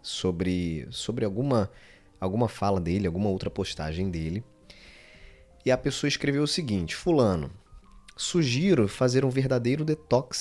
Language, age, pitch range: Portuguese, 20-39, 90-130 Hz